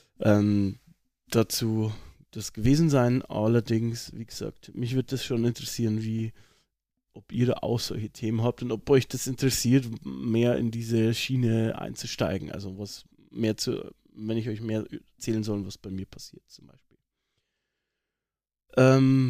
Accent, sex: German, male